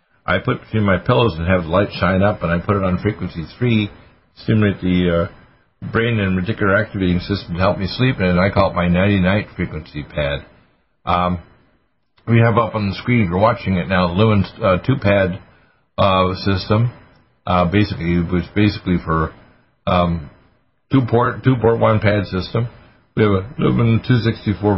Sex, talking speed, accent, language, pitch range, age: male, 170 wpm, American, English, 90-115 Hz, 60-79